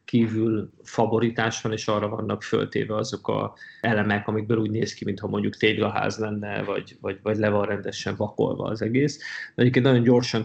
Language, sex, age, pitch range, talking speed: Hungarian, male, 20-39, 110-120 Hz, 160 wpm